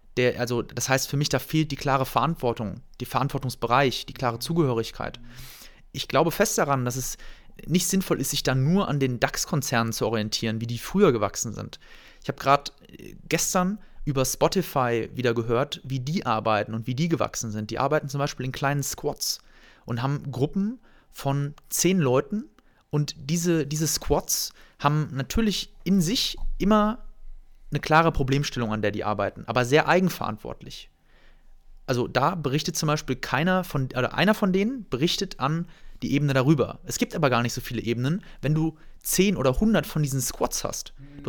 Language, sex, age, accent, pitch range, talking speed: German, male, 30-49, German, 130-170 Hz, 175 wpm